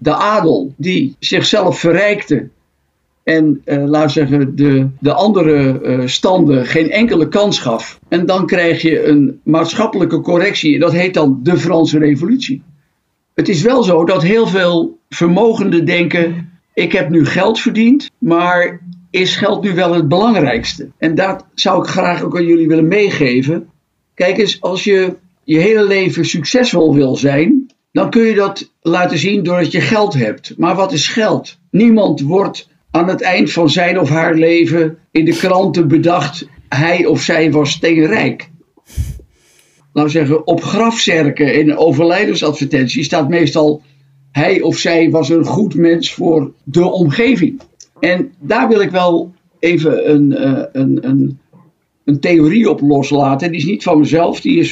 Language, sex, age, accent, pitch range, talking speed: Dutch, male, 50-69, Dutch, 150-185 Hz, 155 wpm